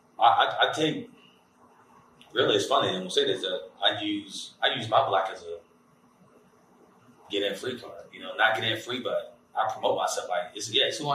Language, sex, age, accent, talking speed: English, male, 20-39, American, 205 wpm